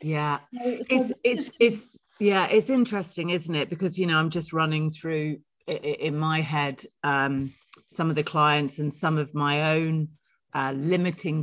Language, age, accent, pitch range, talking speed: English, 40-59, British, 140-175 Hz, 165 wpm